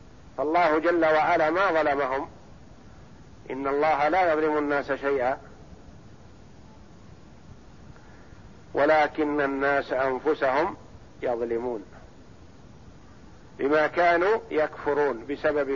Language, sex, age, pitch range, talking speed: Arabic, male, 50-69, 140-165 Hz, 70 wpm